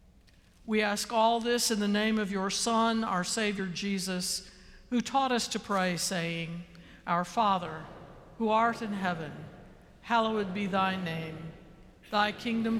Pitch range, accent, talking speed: 185-225 Hz, American, 145 wpm